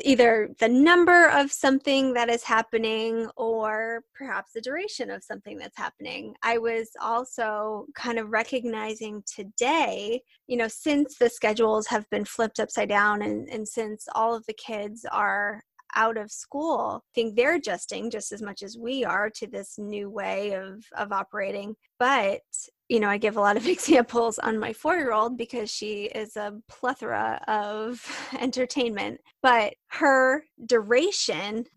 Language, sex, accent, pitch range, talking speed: English, female, American, 210-255 Hz, 155 wpm